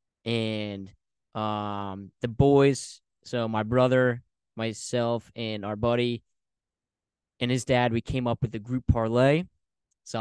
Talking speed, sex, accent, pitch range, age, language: 130 wpm, male, American, 110-130 Hz, 20-39, English